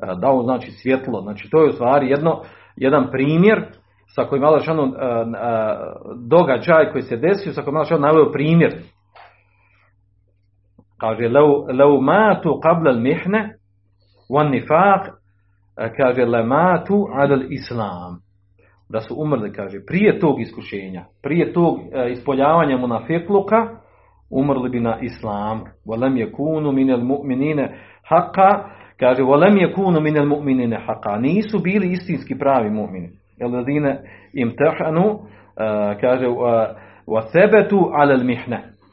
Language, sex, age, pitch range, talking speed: Croatian, male, 40-59, 110-160 Hz, 105 wpm